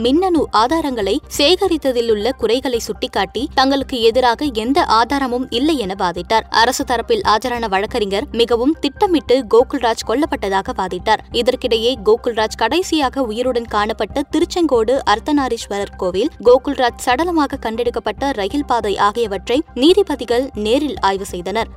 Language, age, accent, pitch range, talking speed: Tamil, 20-39, native, 230-300 Hz, 100 wpm